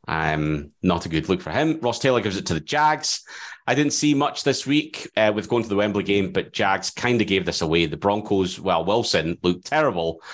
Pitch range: 90-125 Hz